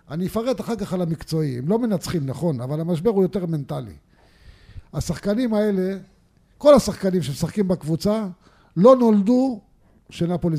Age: 50-69